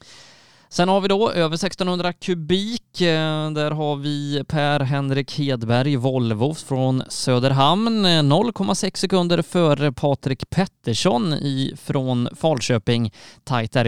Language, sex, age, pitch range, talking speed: Swedish, male, 20-39, 125-170 Hz, 105 wpm